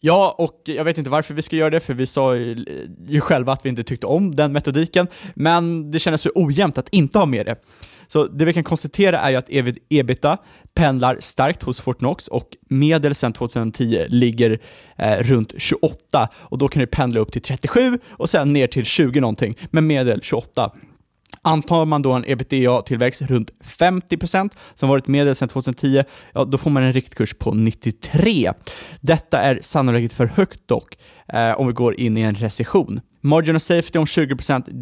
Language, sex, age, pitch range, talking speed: Swedish, male, 20-39, 120-155 Hz, 190 wpm